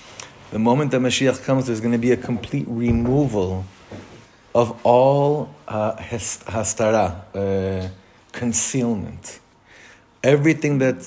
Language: English